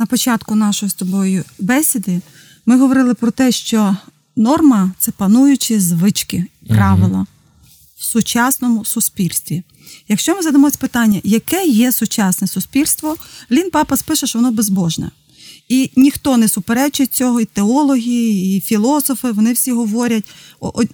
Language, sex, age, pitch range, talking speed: Ukrainian, female, 30-49, 205-270 Hz, 130 wpm